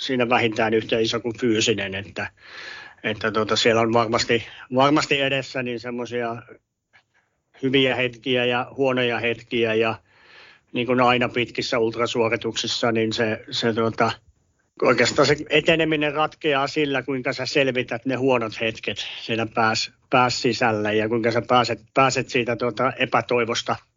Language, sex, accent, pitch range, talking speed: Finnish, male, native, 115-125 Hz, 135 wpm